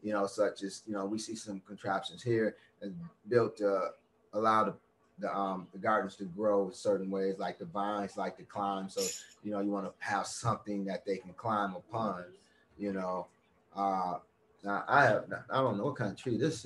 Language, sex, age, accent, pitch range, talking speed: English, male, 30-49, American, 100-135 Hz, 200 wpm